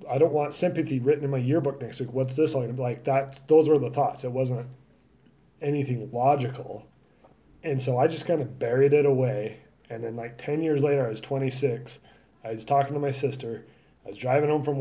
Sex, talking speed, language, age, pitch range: male, 220 wpm, English, 30-49, 110-140 Hz